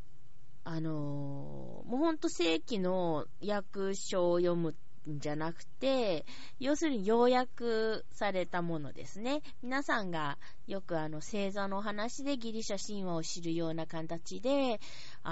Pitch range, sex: 155-240 Hz, female